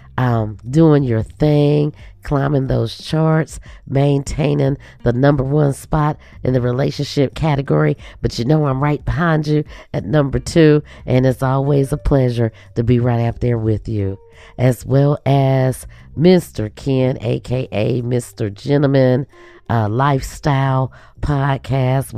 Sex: female